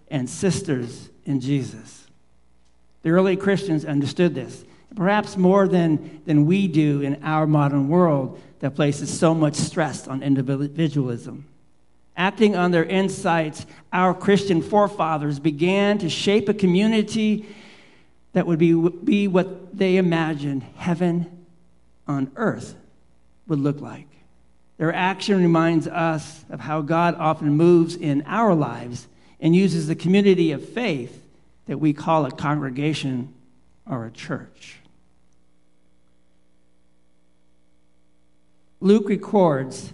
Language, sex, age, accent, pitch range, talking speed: English, male, 50-69, American, 135-180 Hz, 120 wpm